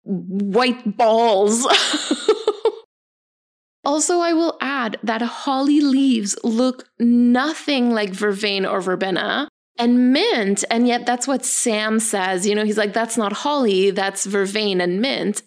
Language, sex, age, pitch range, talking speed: English, female, 20-39, 215-285 Hz, 130 wpm